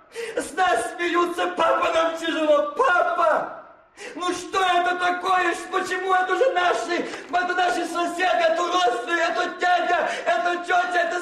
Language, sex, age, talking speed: Russian, male, 40-59, 135 wpm